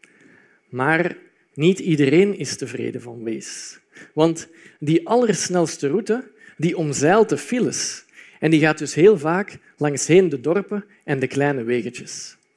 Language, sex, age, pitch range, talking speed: Dutch, male, 50-69, 145-205 Hz, 135 wpm